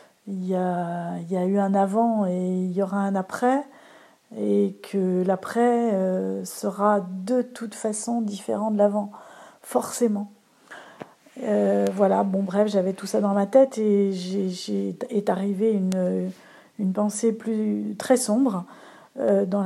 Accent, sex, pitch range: French, female, 185-220 Hz